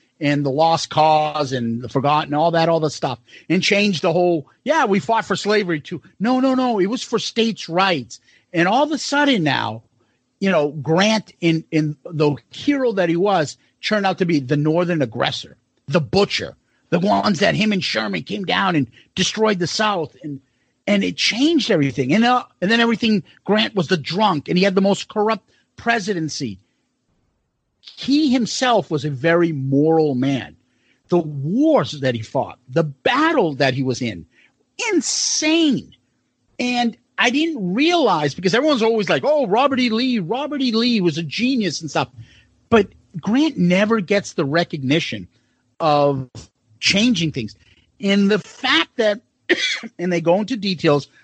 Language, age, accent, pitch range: English, 50-69, American, 145-225 Hz